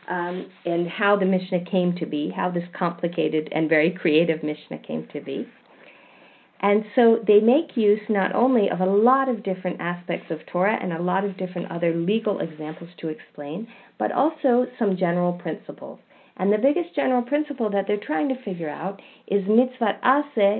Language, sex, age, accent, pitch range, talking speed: English, female, 50-69, American, 175-235 Hz, 180 wpm